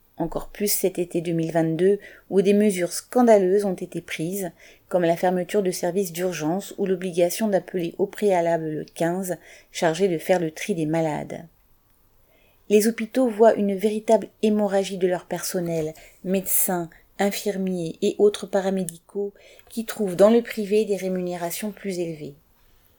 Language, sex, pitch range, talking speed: French, female, 170-200 Hz, 145 wpm